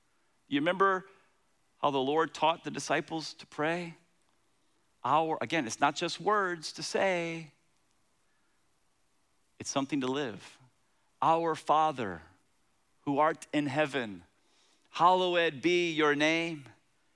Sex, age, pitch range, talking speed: male, 40-59, 140-195 Hz, 110 wpm